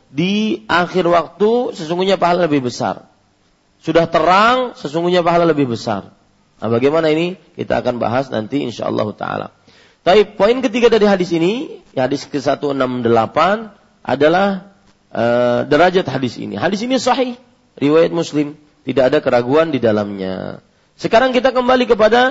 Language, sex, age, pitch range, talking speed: Malay, male, 40-59, 155-210 Hz, 135 wpm